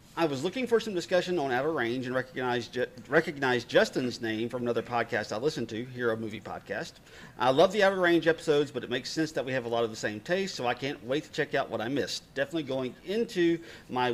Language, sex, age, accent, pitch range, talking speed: English, male, 40-59, American, 120-165 Hz, 240 wpm